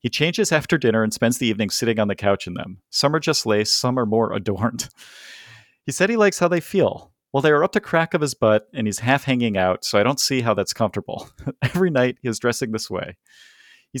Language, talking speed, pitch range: English, 250 wpm, 105-150 Hz